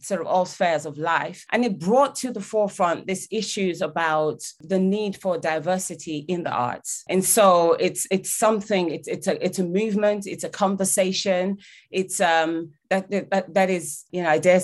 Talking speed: 190 wpm